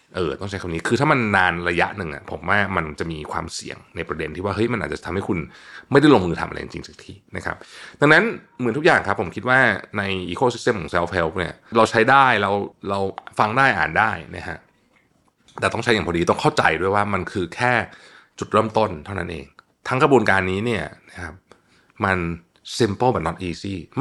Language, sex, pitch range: Thai, male, 85-120 Hz